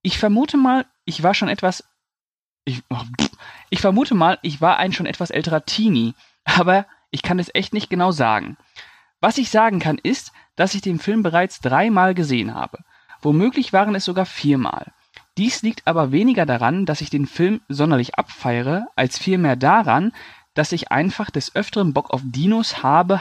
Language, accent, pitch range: German, German, 145-200 Hz